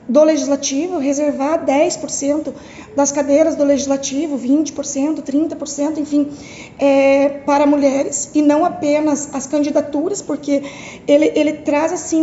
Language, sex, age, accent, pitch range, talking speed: Portuguese, female, 20-39, Brazilian, 285-335 Hz, 120 wpm